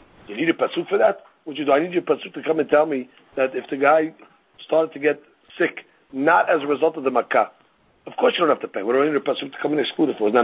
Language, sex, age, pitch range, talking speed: English, male, 50-69, 130-160 Hz, 255 wpm